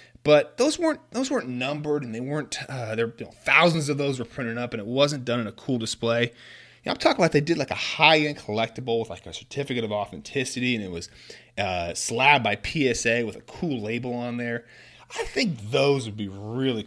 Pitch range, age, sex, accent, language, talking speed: 115-155 Hz, 30-49, male, American, English, 225 wpm